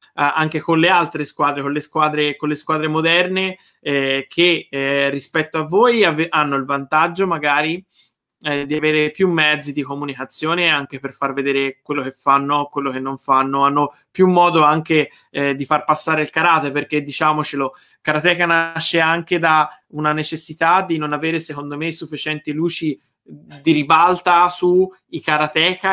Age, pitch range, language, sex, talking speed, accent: 20-39, 145-165 Hz, Italian, male, 160 wpm, native